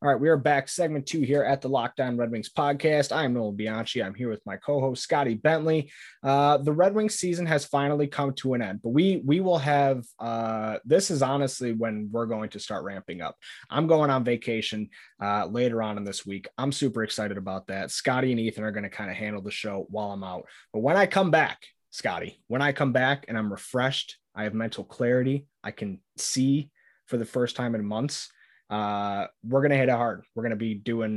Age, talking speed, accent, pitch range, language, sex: 20-39, 225 wpm, American, 110-140 Hz, English, male